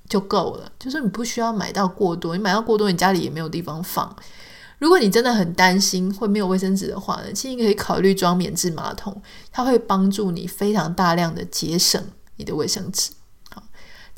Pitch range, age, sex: 180-210 Hz, 20-39, female